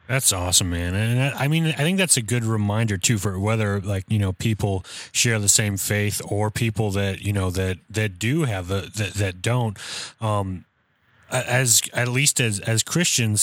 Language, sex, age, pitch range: English, male, 30-49, 95-115 Hz